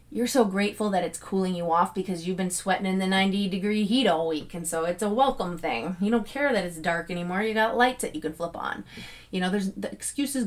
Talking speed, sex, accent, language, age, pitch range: 260 wpm, female, American, English, 30-49, 175-255 Hz